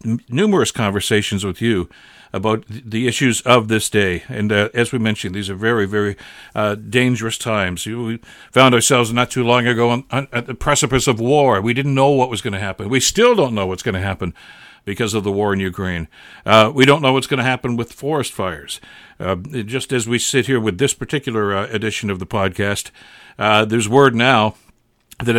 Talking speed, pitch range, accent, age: 210 wpm, 105-125 Hz, American, 60-79